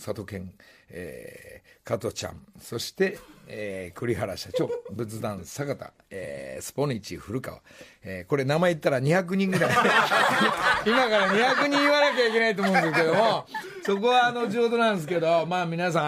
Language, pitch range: Japanese, 110-175 Hz